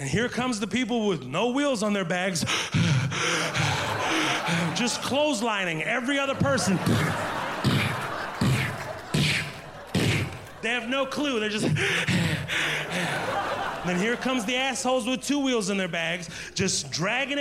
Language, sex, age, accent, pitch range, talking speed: English, male, 30-49, American, 205-320 Hz, 120 wpm